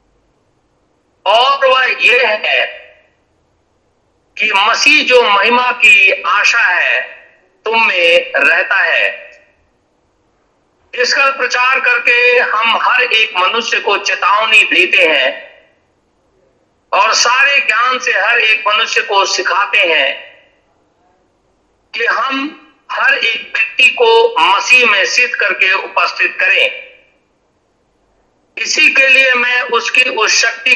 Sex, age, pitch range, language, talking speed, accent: male, 50-69, 200-330 Hz, Hindi, 105 wpm, native